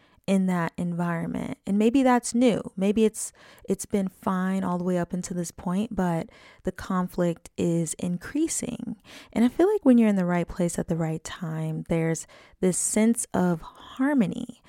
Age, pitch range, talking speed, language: 20-39, 175-245 Hz, 175 wpm, English